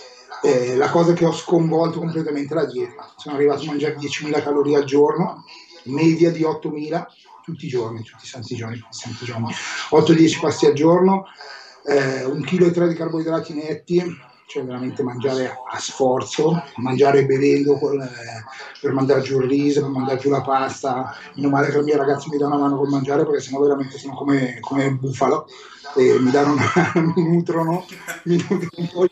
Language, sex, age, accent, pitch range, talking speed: Italian, male, 30-49, native, 135-165 Hz, 180 wpm